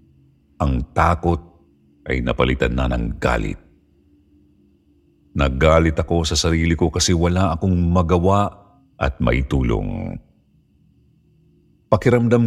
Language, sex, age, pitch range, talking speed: Filipino, male, 50-69, 75-105 Hz, 95 wpm